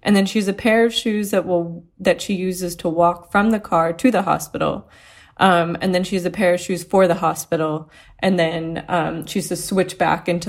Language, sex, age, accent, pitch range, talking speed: English, female, 20-39, American, 165-185 Hz, 225 wpm